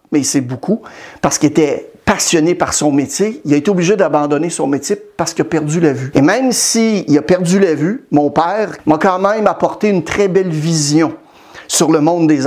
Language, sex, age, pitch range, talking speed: French, male, 60-79, 155-200 Hz, 215 wpm